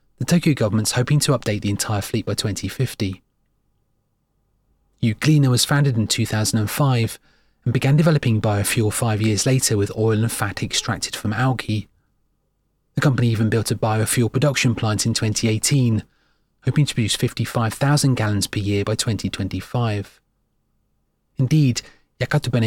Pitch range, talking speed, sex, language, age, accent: 105-130 Hz, 135 wpm, male, English, 30-49, British